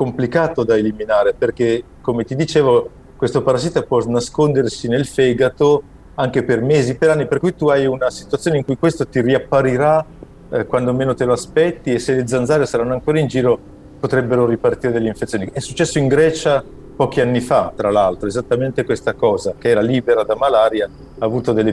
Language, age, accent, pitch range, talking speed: Italian, 40-59, native, 120-160 Hz, 185 wpm